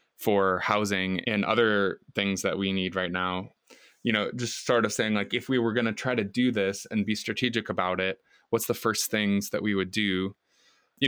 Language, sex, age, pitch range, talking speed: English, male, 20-39, 95-110 Hz, 215 wpm